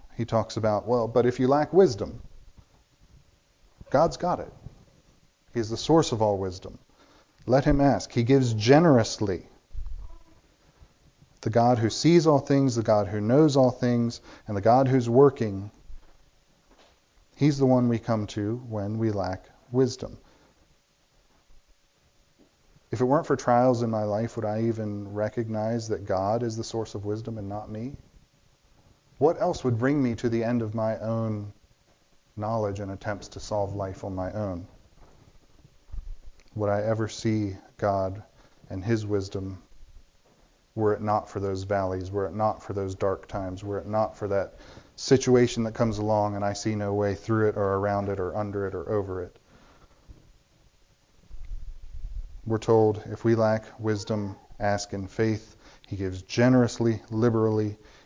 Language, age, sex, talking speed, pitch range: English, 40-59, male, 155 wpm, 100-120 Hz